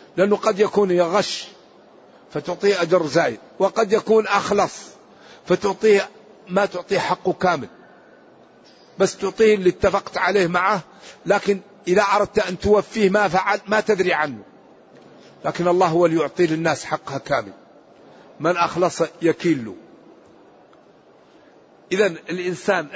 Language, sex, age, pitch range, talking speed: Arabic, male, 50-69, 150-200 Hz, 115 wpm